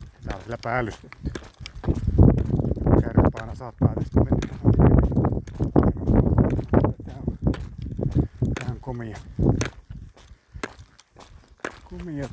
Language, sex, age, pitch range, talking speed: Finnish, male, 60-79, 105-125 Hz, 55 wpm